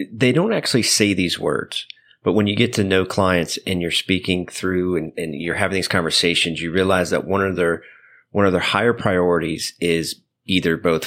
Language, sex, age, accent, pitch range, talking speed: English, male, 30-49, American, 85-100 Hz, 200 wpm